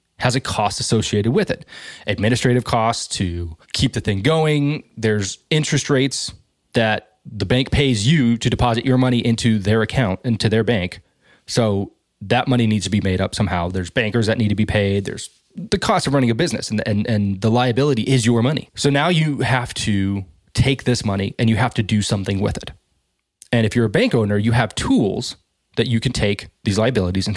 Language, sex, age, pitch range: English, male, 20-39, 105-130 Hz